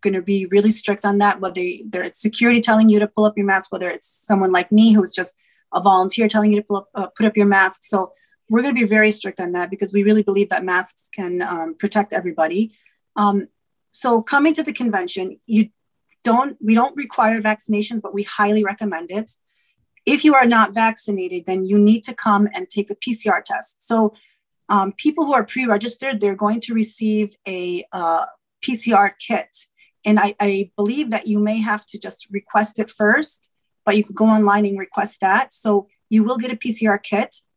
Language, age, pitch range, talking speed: English, 30-49, 200-220 Hz, 205 wpm